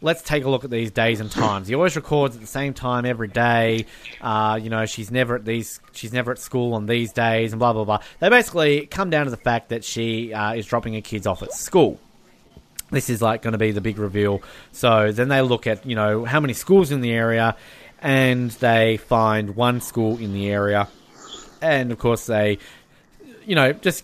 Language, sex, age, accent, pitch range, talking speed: English, male, 20-39, Australian, 115-160 Hz, 225 wpm